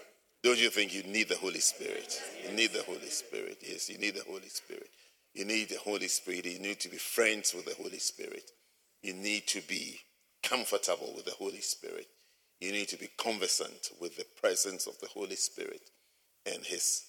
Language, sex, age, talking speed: English, male, 50-69, 195 wpm